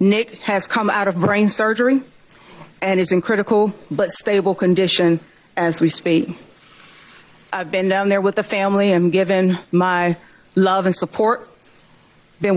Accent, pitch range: American, 180-205 Hz